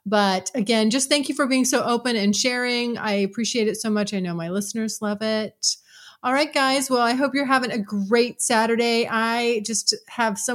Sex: female